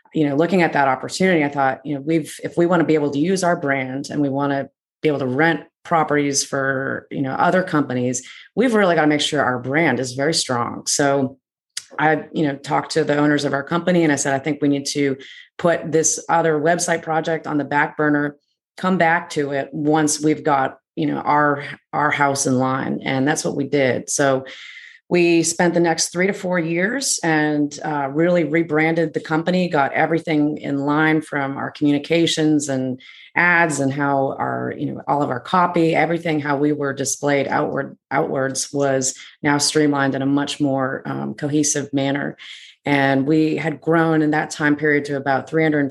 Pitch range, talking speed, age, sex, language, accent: 140-160 Hz, 205 wpm, 30-49, female, English, American